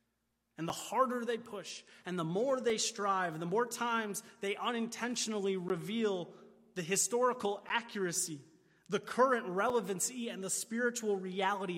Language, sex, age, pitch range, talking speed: English, male, 30-49, 185-235 Hz, 130 wpm